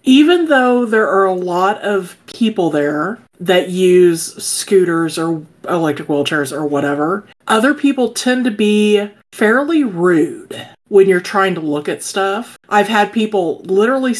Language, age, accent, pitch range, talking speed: English, 40-59, American, 160-215 Hz, 150 wpm